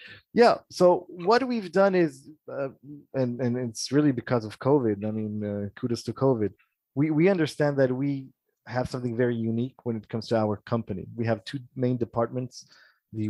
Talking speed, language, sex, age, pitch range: 185 wpm, English, male, 30-49, 105-125 Hz